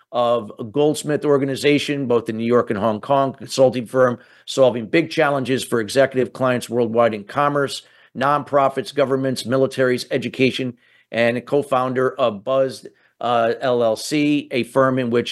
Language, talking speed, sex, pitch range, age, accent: English, 140 wpm, male, 125-145 Hz, 50-69, American